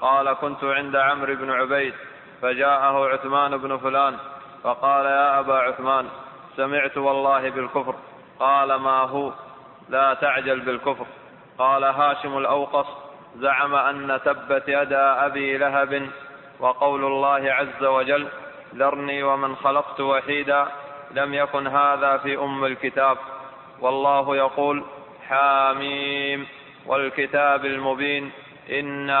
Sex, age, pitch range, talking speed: male, 20-39, 135-140 Hz, 105 wpm